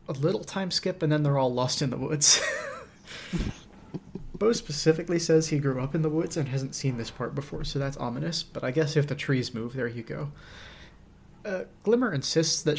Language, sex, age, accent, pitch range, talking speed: English, male, 30-49, American, 125-155 Hz, 205 wpm